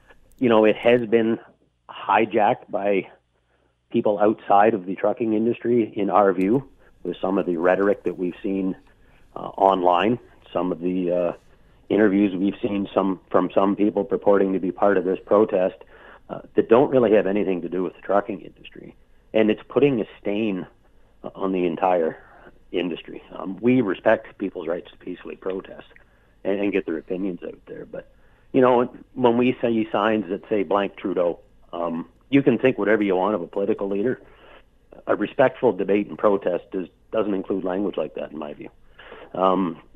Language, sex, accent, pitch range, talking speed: English, male, American, 90-110 Hz, 175 wpm